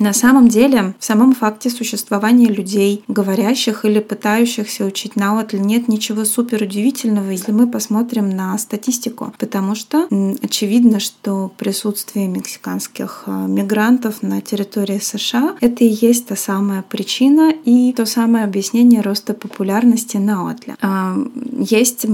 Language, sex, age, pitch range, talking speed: Russian, female, 20-39, 195-230 Hz, 135 wpm